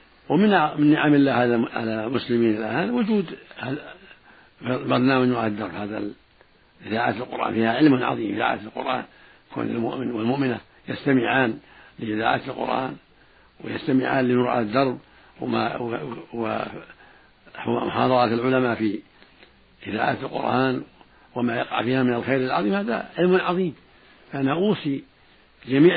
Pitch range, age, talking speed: 120-140 Hz, 70-89, 110 wpm